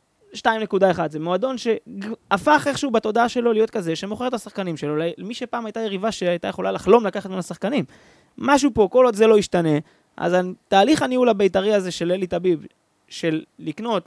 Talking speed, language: 165 wpm, Hebrew